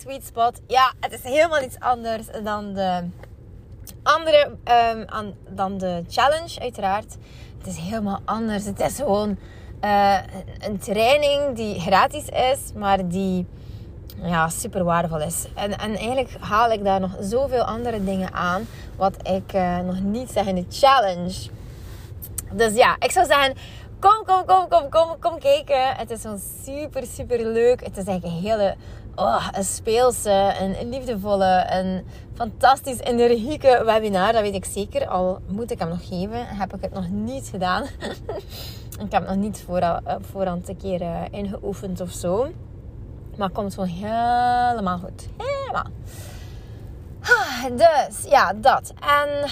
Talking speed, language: 155 wpm, Dutch